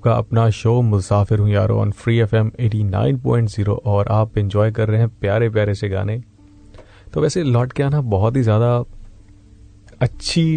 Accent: native